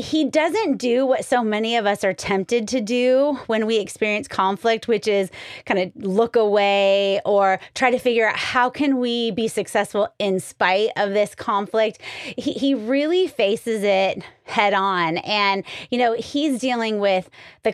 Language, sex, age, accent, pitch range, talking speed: English, female, 30-49, American, 200-275 Hz, 175 wpm